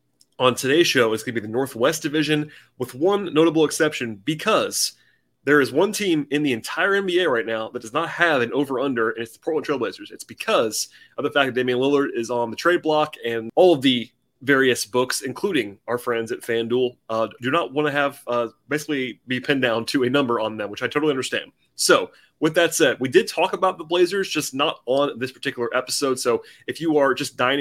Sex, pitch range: male, 120-150 Hz